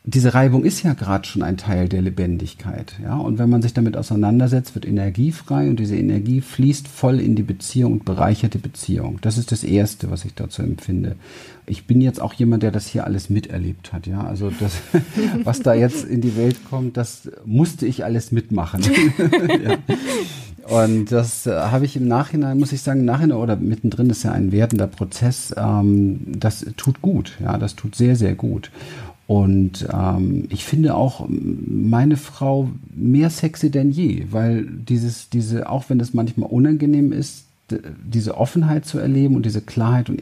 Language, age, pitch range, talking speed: German, 50-69, 105-135 Hz, 180 wpm